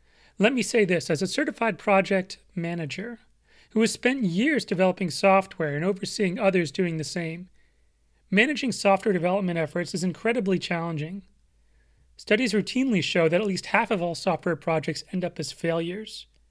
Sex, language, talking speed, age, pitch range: male, English, 155 wpm, 30-49, 165-205 Hz